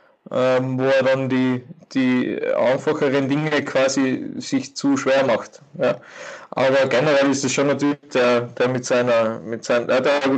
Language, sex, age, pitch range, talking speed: German, male, 20-39, 125-145 Hz, 155 wpm